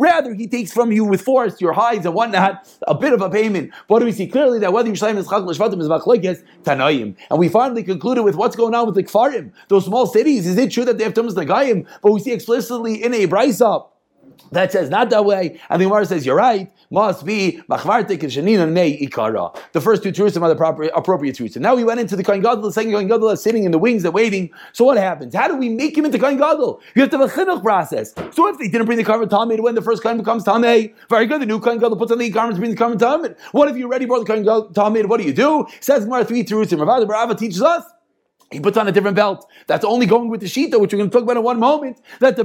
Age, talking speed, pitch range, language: 30-49, 265 wpm, 205-245 Hz, English